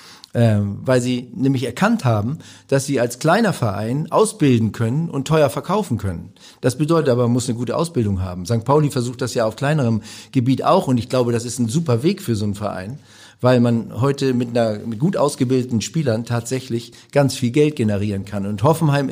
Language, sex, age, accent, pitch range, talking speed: German, male, 50-69, German, 115-135 Hz, 200 wpm